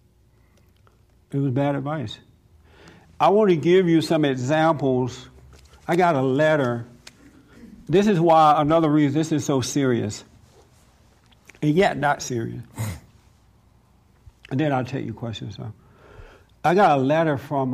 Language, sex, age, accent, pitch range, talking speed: English, male, 60-79, American, 120-155 Hz, 135 wpm